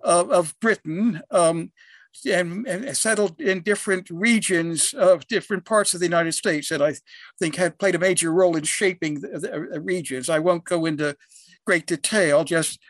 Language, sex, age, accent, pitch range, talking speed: English, male, 60-79, American, 170-200 Hz, 170 wpm